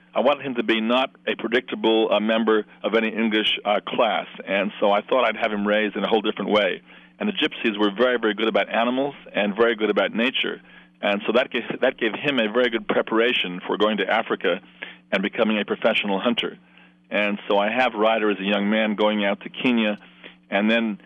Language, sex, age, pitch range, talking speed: English, male, 40-59, 100-110 Hz, 215 wpm